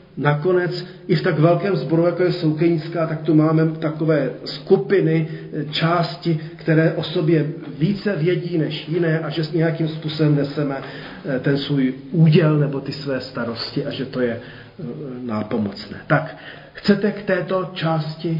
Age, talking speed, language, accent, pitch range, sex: 40-59, 145 wpm, Czech, native, 150-170 Hz, male